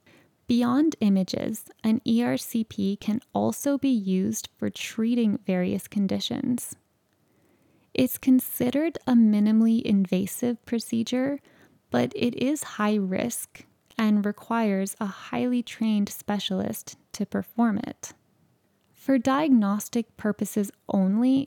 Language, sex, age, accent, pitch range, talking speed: English, female, 10-29, American, 195-235 Hz, 100 wpm